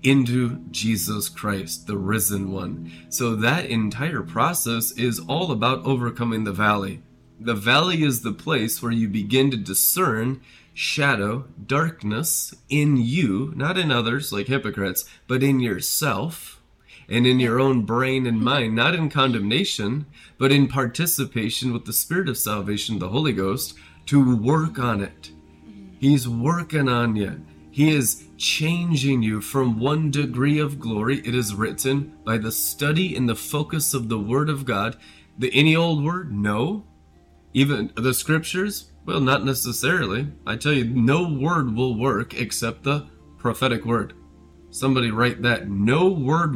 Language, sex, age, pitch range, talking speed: English, male, 20-39, 105-145 Hz, 150 wpm